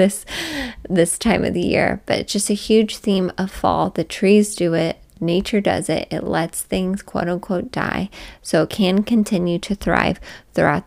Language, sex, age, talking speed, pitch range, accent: English, female, 20-39, 190 wpm, 170-210 Hz, American